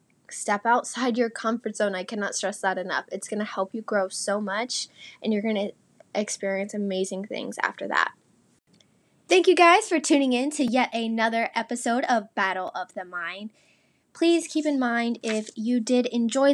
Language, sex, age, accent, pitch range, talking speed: English, female, 10-29, American, 200-250 Hz, 180 wpm